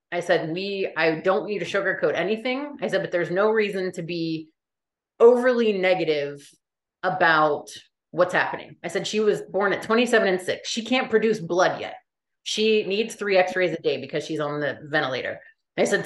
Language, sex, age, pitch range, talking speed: English, female, 30-49, 170-215 Hz, 185 wpm